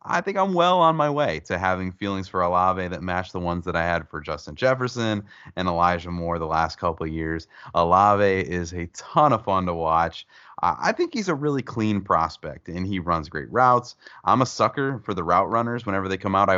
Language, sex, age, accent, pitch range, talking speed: English, male, 30-49, American, 85-105 Hz, 225 wpm